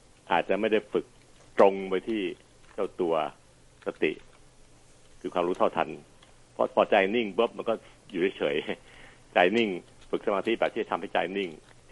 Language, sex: Thai, male